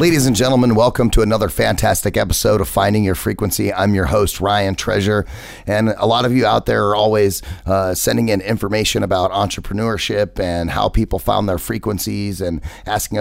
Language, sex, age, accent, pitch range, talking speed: English, male, 30-49, American, 95-110 Hz, 180 wpm